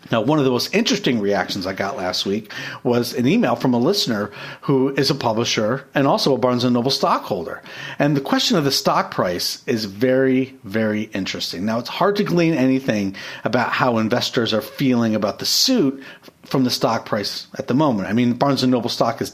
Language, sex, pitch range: English, male, 120-150 Hz